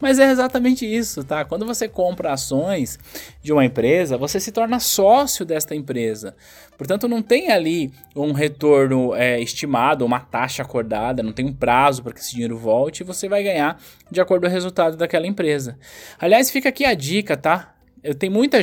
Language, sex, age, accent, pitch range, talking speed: Portuguese, male, 20-39, Brazilian, 145-210 Hz, 185 wpm